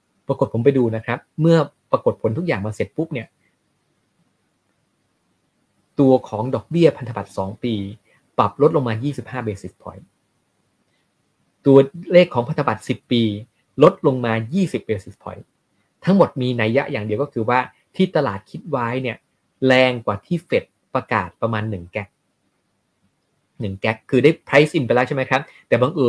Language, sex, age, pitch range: Thai, male, 20-39, 110-145 Hz